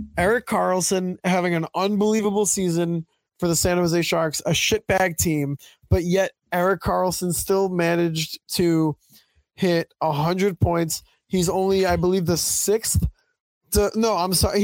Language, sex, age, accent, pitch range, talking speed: English, male, 20-39, American, 155-185 Hz, 140 wpm